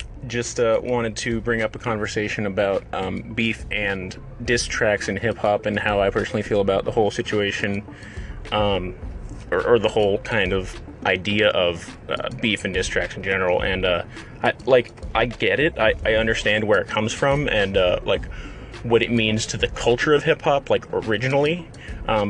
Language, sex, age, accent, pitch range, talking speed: English, male, 30-49, American, 105-125 Hz, 185 wpm